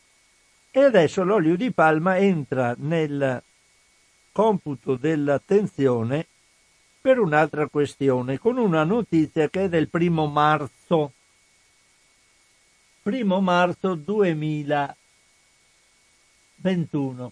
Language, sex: Italian, male